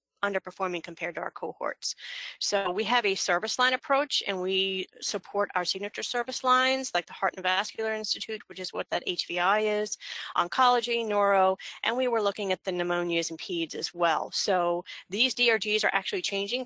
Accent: American